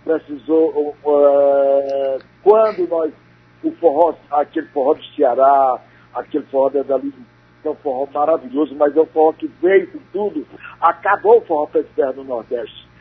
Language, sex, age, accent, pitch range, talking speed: Portuguese, male, 60-79, Brazilian, 135-205 Hz, 145 wpm